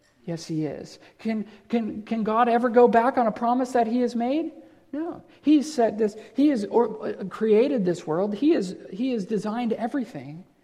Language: English